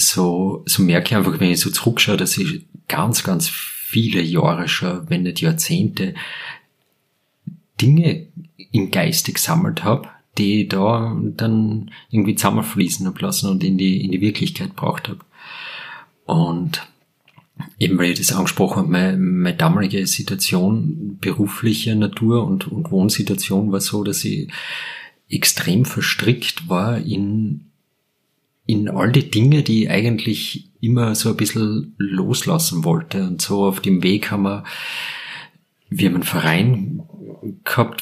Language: German